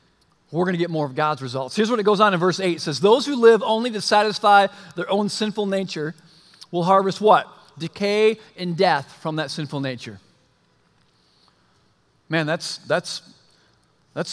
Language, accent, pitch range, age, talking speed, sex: English, American, 170-230 Hz, 40-59, 170 wpm, male